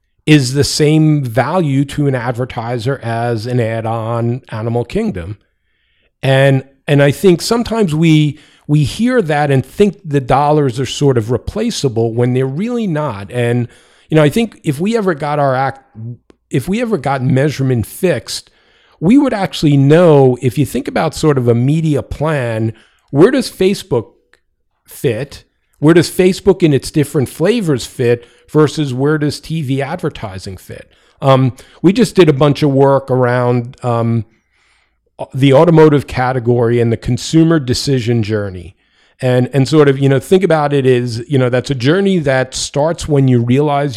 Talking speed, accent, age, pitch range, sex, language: 160 wpm, American, 40-59, 120-150 Hz, male, English